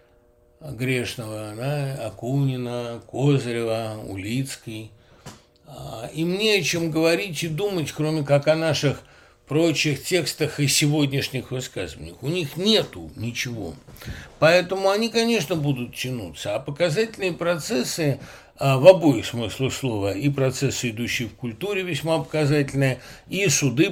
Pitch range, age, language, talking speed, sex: 125-160 Hz, 60-79, Russian, 115 wpm, male